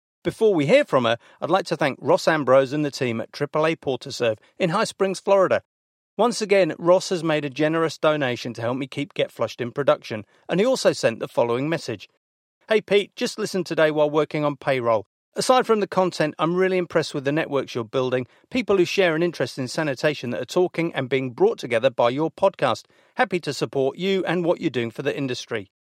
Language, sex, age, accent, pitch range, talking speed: English, male, 40-59, British, 135-185 Hz, 215 wpm